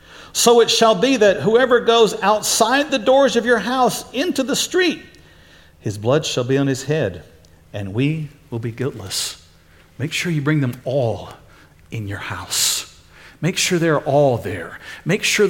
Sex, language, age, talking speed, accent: male, English, 50-69, 170 wpm, American